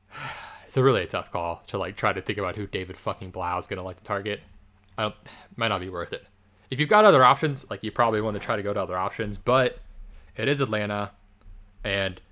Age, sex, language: 20-39, male, English